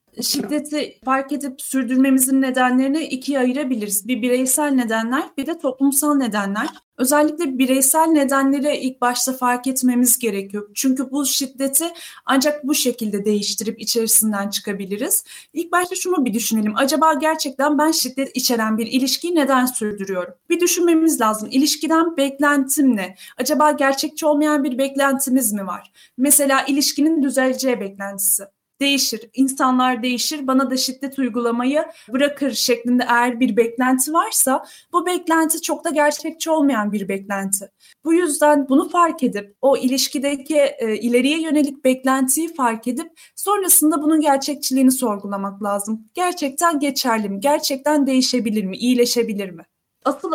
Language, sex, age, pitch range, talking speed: Turkish, female, 30-49, 240-300 Hz, 130 wpm